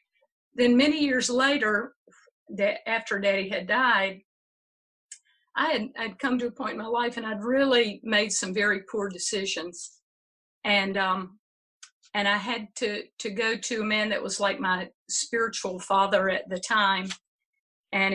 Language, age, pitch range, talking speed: English, 50-69, 200-235 Hz, 155 wpm